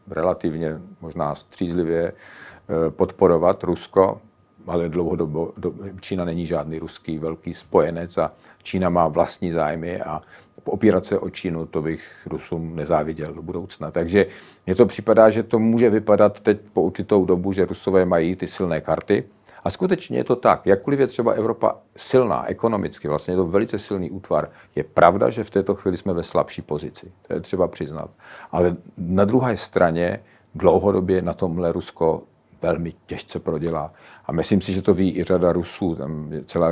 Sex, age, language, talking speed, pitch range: male, 50-69, Czech, 165 wpm, 80-95 Hz